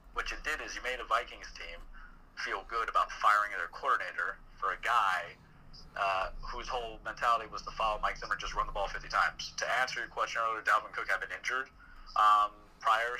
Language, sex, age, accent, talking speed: English, male, 30-49, American, 210 wpm